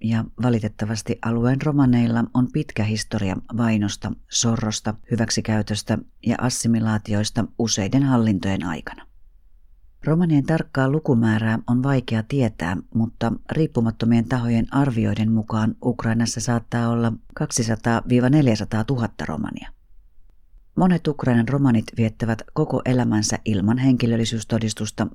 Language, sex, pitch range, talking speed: Finnish, female, 110-125 Hz, 95 wpm